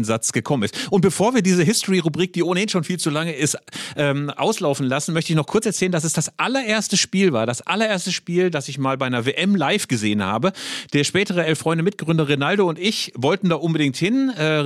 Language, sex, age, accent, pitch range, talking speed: German, male, 40-59, German, 145-185 Hz, 215 wpm